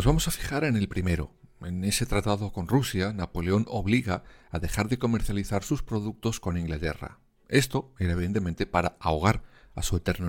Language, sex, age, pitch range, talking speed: Spanish, male, 50-69, 90-125 Hz, 175 wpm